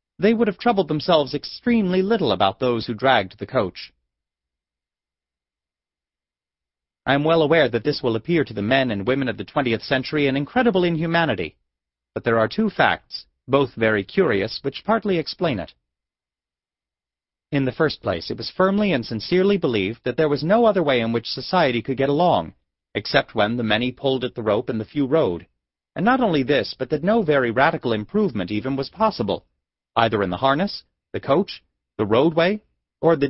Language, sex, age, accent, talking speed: English, male, 30-49, American, 185 wpm